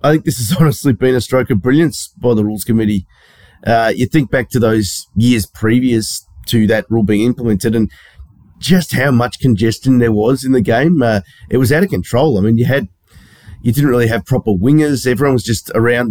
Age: 30-49